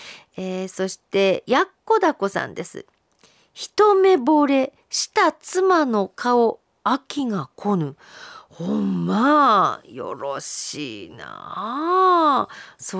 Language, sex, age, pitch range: Japanese, female, 50-69, 220-335 Hz